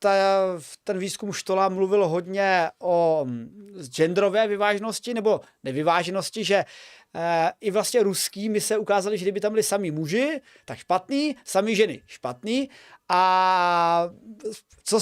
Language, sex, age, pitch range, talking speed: Czech, male, 30-49, 180-220 Hz, 115 wpm